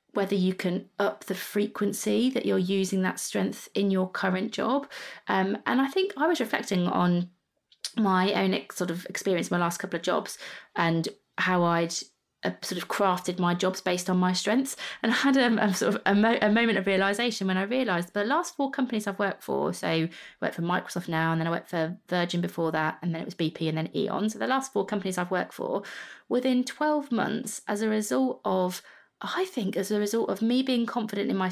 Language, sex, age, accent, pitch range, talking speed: English, female, 20-39, British, 180-220 Hz, 225 wpm